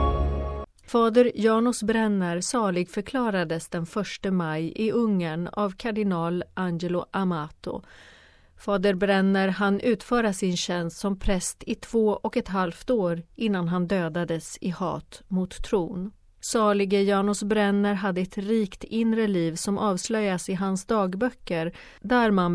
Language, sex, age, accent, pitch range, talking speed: Swedish, female, 40-59, native, 175-210 Hz, 135 wpm